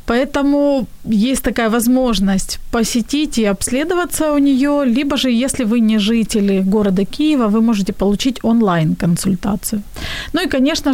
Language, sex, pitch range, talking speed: Ukrainian, female, 205-255 Hz, 130 wpm